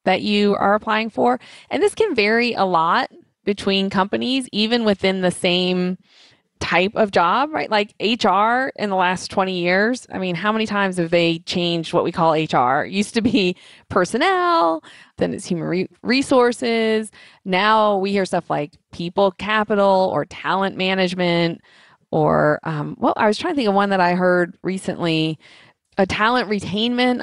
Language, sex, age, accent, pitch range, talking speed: English, female, 20-39, American, 175-215 Hz, 170 wpm